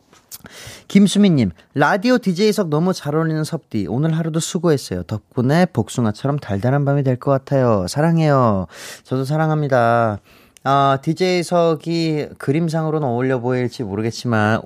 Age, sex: 30-49, male